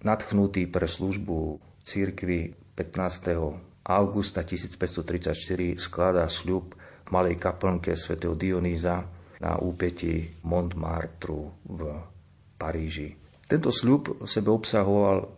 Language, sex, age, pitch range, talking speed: Slovak, male, 40-59, 85-100 Hz, 90 wpm